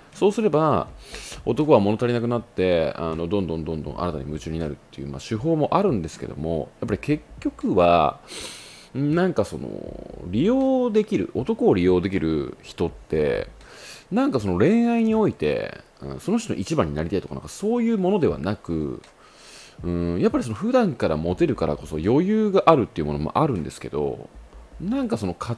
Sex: male